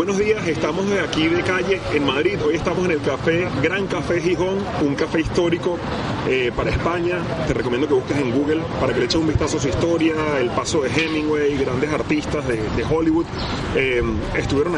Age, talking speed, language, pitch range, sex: 30-49, 200 wpm, Spanish, 145-180 Hz, male